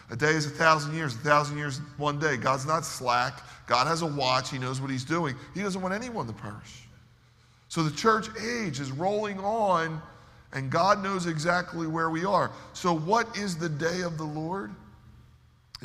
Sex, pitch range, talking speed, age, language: male, 125-170 Hz, 195 wpm, 40-59, English